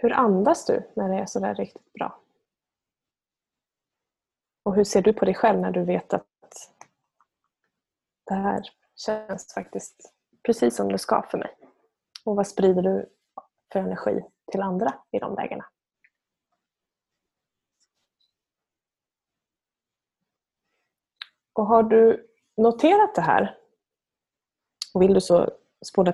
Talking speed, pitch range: 120 wpm, 180-225 Hz